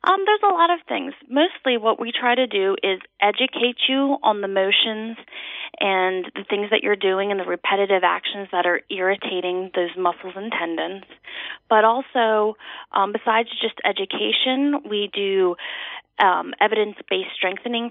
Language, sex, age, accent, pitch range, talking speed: English, female, 30-49, American, 185-215 Hz, 155 wpm